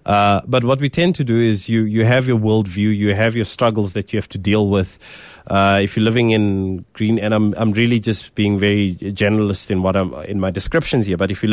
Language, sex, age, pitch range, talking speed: English, male, 20-39, 100-120 Hz, 245 wpm